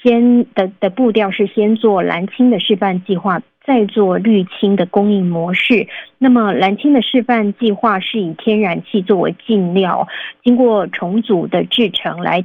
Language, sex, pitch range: Chinese, female, 190-230 Hz